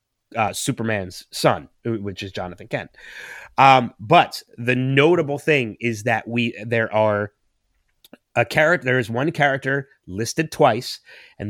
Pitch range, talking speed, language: 110-130 Hz, 135 wpm, English